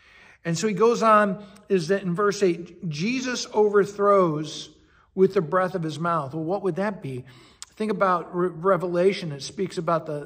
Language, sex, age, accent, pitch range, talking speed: English, male, 60-79, American, 165-205 Hz, 180 wpm